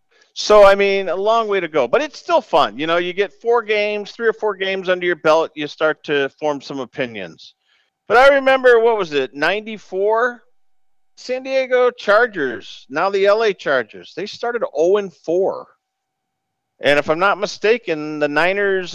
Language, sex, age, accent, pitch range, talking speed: English, male, 50-69, American, 145-215 Hz, 175 wpm